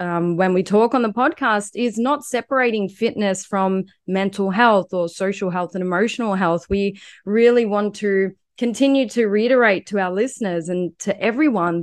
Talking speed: 165 wpm